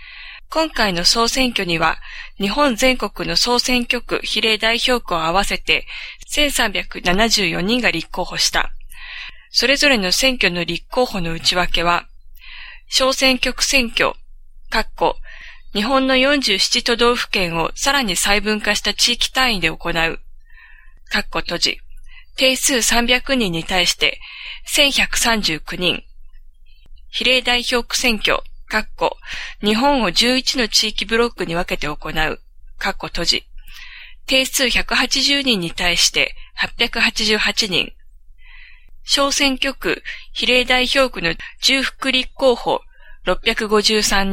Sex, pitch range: female, 185-265 Hz